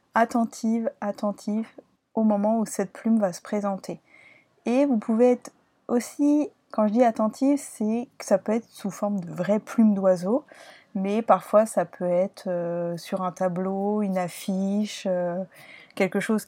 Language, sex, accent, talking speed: French, female, French, 160 wpm